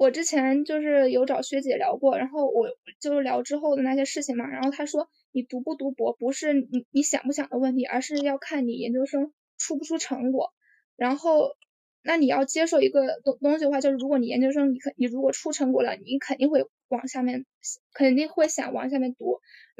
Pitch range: 260-300 Hz